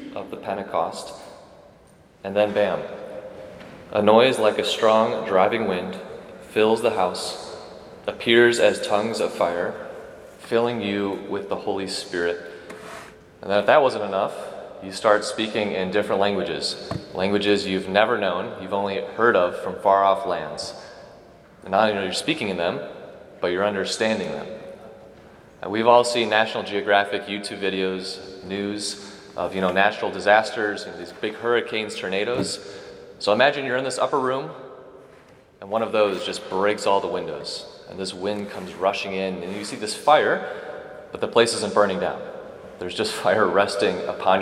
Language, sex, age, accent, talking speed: English, male, 30-49, American, 160 wpm